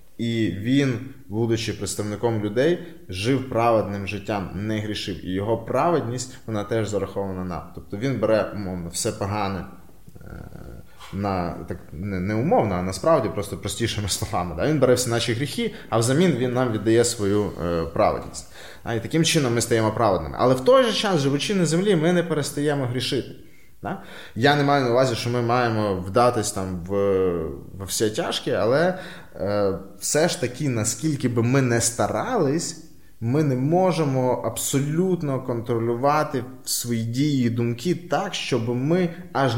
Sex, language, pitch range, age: male, Ukrainian, 95-130 Hz, 20-39